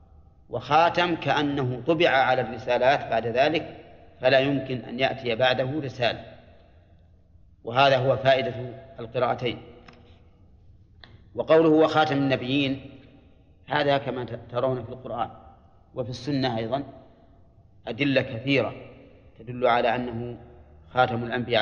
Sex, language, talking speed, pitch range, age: male, Arabic, 95 wpm, 95-130 Hz, 40-59